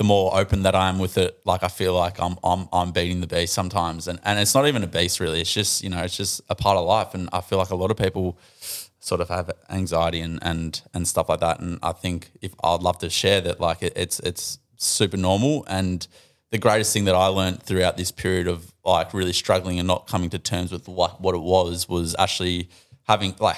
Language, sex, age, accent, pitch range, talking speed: English, male, 20-39, Australian, 90-100 Hz, 250 wpm